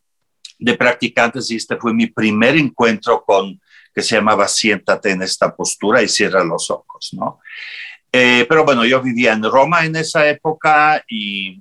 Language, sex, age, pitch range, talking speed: Spanish, male, 50-69, 105-160 Hz, 165 wpm